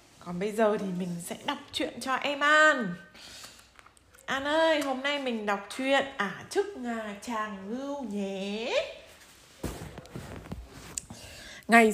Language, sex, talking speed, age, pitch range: Vietnamese, female, 125 wpm, 20-39, 190-265 Hz